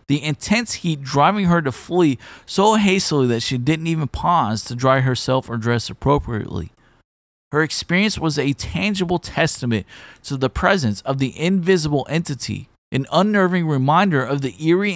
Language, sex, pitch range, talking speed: English, male, 120-170 Hz, 155 wpm